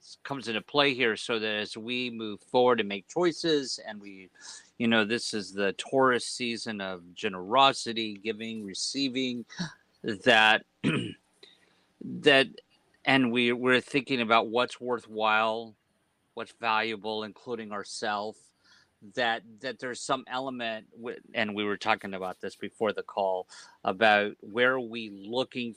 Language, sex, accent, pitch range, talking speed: English, male, American, 100-120 Hz, 135 wpm